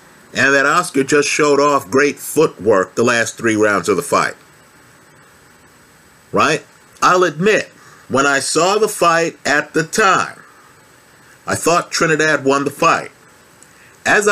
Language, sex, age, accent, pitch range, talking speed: English, male, 50-69, American, 125-155 Hz, 140 wpm